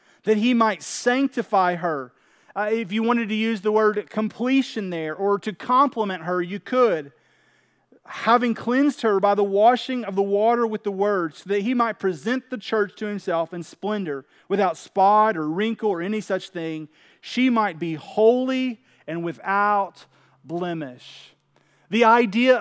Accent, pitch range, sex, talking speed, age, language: American, 195-230 Hz, male, 160 wpm, 30-49, English